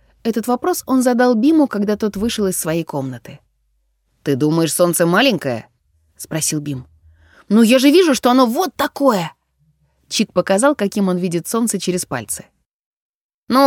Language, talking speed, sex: Russian, 150 wpm, female